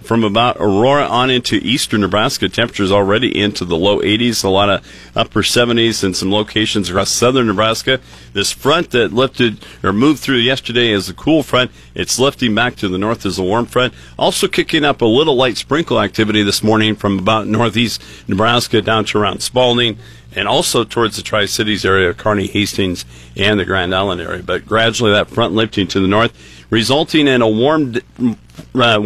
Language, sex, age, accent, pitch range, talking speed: English, male, 40-59, American, 100-120 Hz, 185 wpm